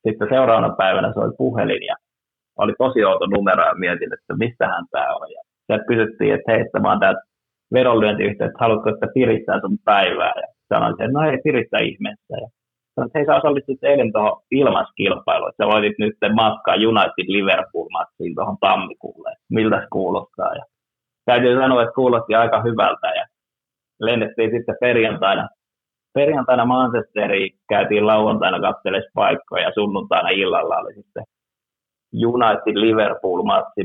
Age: 30-49